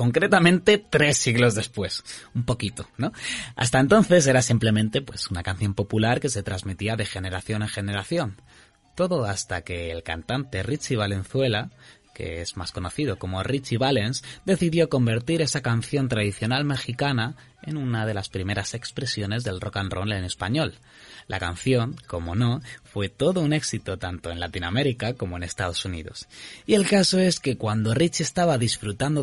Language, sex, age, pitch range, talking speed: Spanish, male, 20-39, 95-130 Hz, 160 wpm